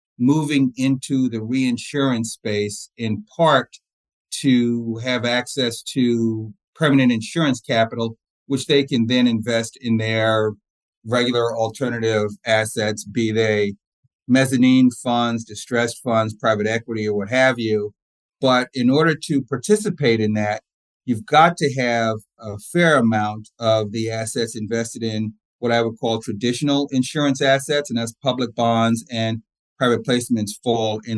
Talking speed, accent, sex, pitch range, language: 135 wpm, American, male, 110-125 Hz, English